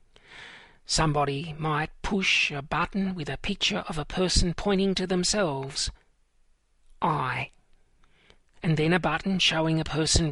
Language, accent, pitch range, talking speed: English, Australian, 150-190 Hz, 130 wpm